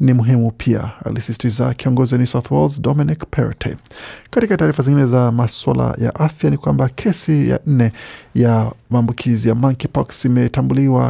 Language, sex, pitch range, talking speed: Swahili, male, 115-130 Hz, 145 wpm